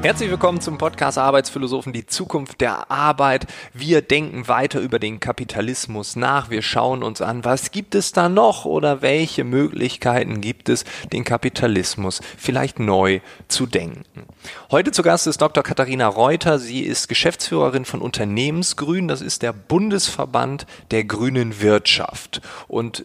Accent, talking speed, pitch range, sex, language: German, 145 wpm, 110-145 Hz, male, German